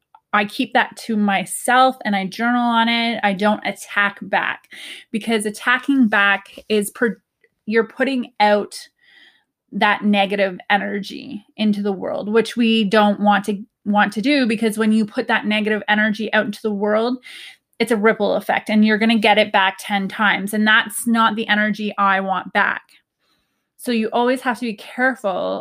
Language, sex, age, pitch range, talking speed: English, female, 20-39, 200-235 Hz, 175 wpm